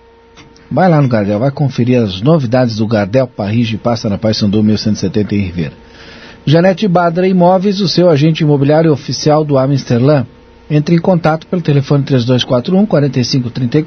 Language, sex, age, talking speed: Portuguese, male, 50-69, 150 wpm